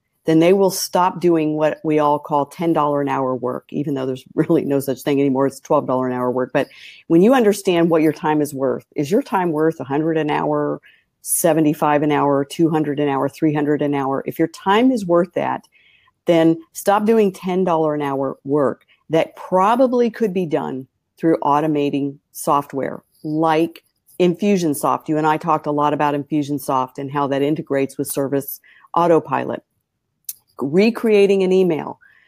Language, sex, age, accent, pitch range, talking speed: English, female, 50-69, American, 145-190 Hz, 170 wpm